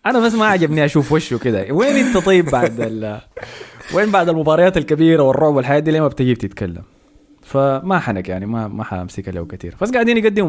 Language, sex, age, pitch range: Arabic, male, 20-39, 110-155 Hz